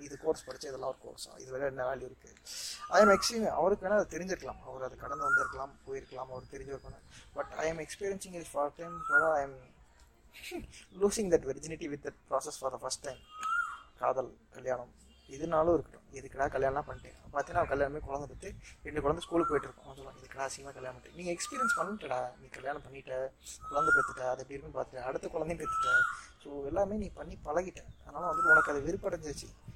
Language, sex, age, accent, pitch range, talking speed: Tamil, male, 20-39, native, 135-185 Hz, 185 wpm